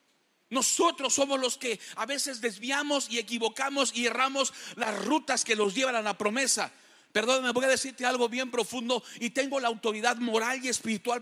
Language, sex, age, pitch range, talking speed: English, male, 40-59, 190-265 Hz, 180 wpm